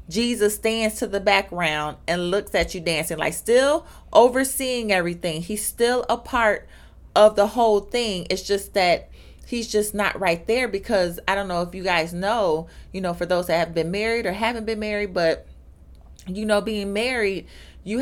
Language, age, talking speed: English, 30-49, 185 wpm